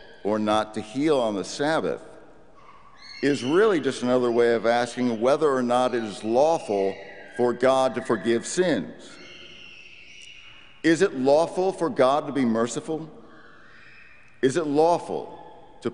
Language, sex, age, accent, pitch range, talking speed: English, male, 50-69, American, 105-135 Hz, 140 wpm